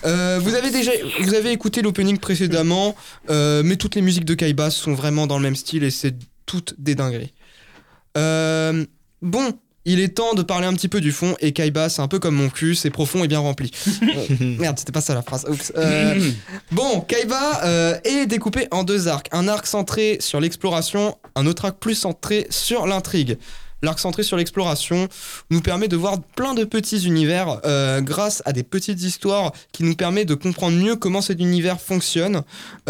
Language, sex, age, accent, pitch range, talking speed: French, male, 20-39, French, 155-200 Hz, 200 wpm